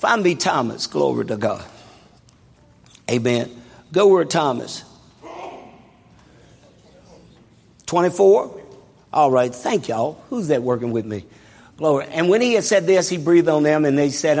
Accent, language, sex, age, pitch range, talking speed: American, English, male, 50-69, 140-175 Hz, 140 wpm